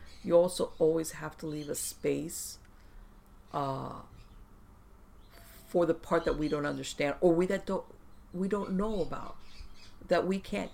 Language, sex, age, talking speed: English, female, 50-69, 150 wpm